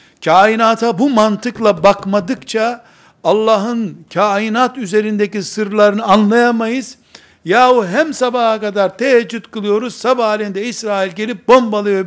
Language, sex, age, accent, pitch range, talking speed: Turkish, male, 60-79, native, 195-235 Hz, 95 wpm